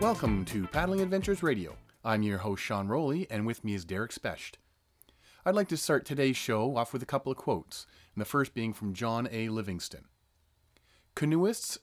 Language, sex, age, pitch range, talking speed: English, male, 30-49, 100-140 Hz, 190 wpm